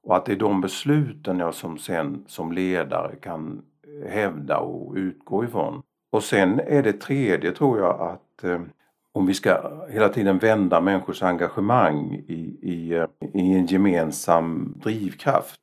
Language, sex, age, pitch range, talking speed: Swedish, male, 50-69, 90-100 Hz, 140 wpm